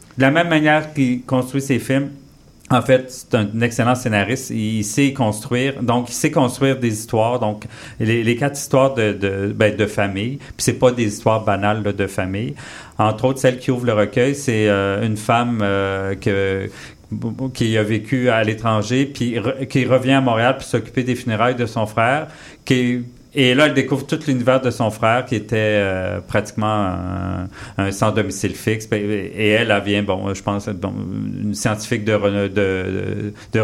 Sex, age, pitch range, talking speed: male, 40-59, 105-130 Hz, 180 wpm